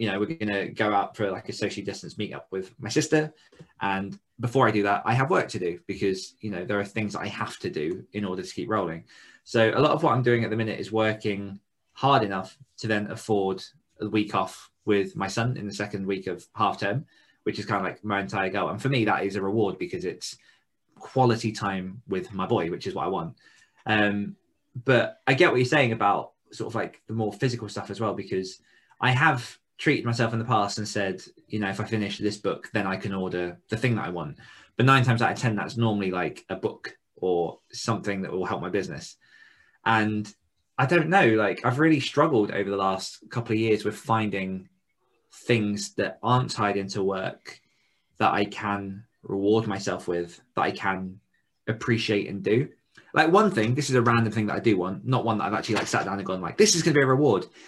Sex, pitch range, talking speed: male, 100-120 Hz, 230 wpm